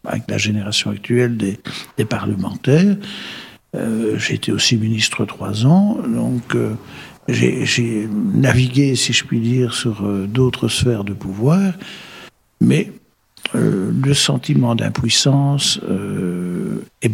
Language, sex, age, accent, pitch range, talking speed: French, male, 60-79, French, 110-140 Hz, 120 wpm